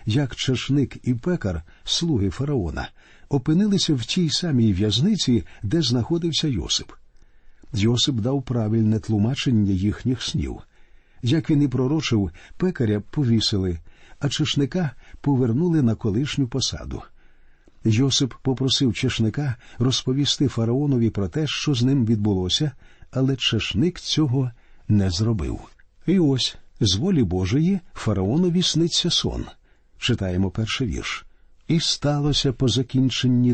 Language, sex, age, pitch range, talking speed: Ukrainian, male, 50-69, 110-145 Hz, 115 wpm